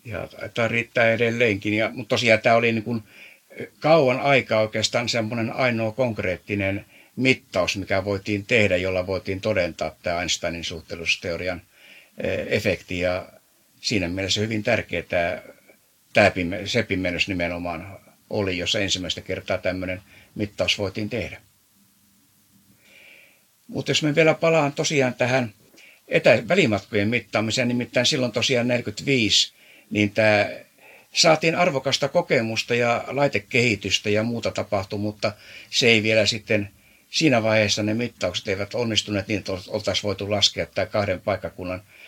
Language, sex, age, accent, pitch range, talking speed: Finnish, male, 60-79, native, 100-125 Hz, 125 wpm